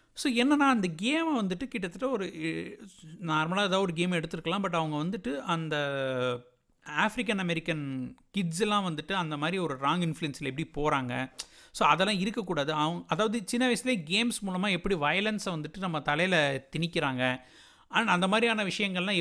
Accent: native